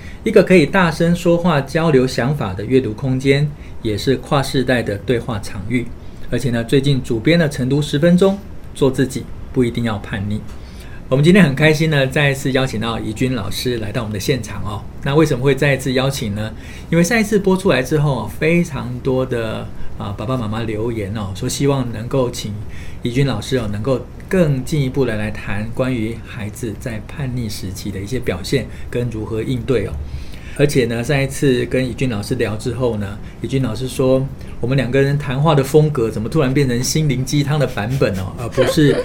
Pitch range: 110-140 Hz